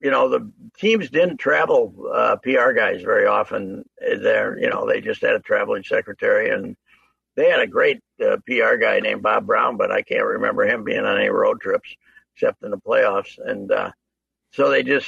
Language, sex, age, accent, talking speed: English, male, 60-79, American, 200 wpm